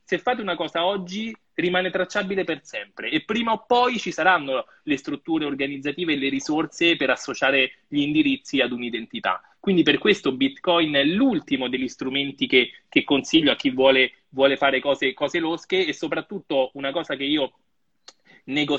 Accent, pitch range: native, 130-185 Hz